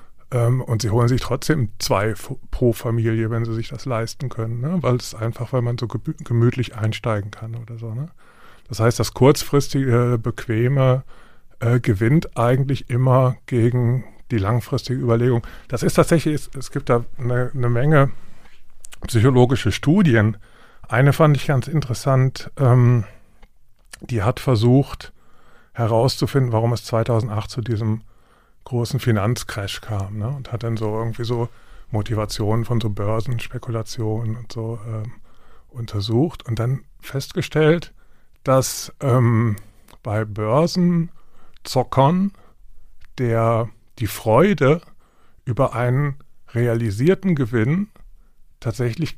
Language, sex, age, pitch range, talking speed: German, male, 30-49, 115-135 Hz, 115 wpm